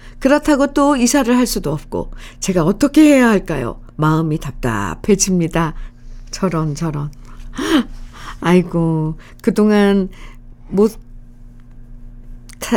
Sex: female